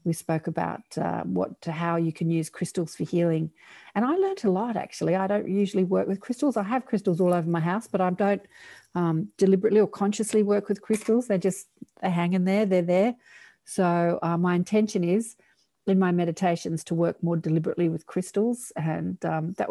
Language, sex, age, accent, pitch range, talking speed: English, female, 40-59, Australian, 165-200 Hz, 200 wpm